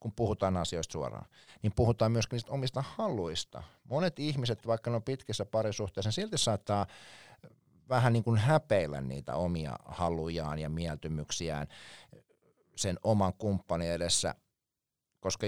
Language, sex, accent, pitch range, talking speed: Finnish, male, native, 90-125 Hz, 130 wpm